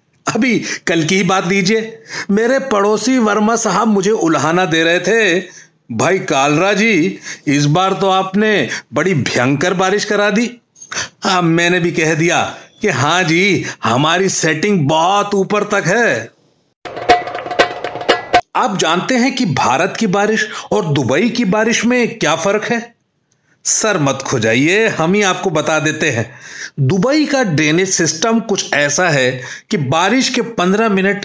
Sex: male